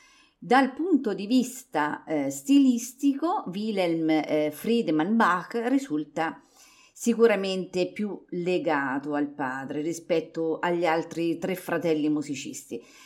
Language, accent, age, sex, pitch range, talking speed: Italian, native, 50-69, female, 165-270 Hz, 100 wpm